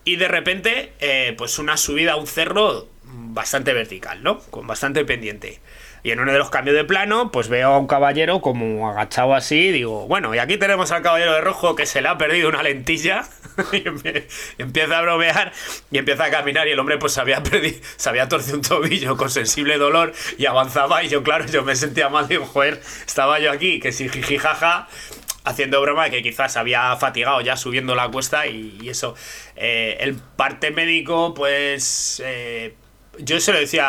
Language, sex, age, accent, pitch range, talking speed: Spanish, male, 20-39, Spanish, 130-160 Hz, 200 wpm